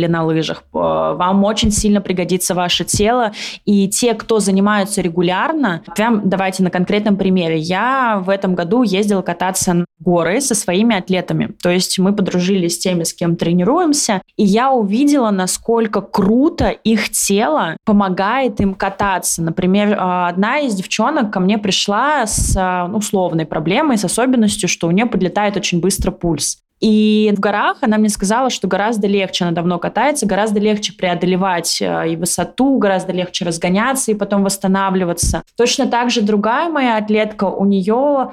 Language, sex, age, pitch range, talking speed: Russian, female, 20-39, 180-215 Hz, 155 wpm